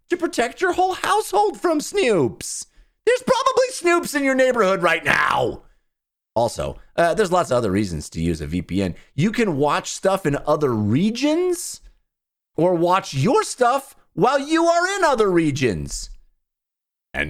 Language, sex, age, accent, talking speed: English, male, 30-49, American, 155 wpm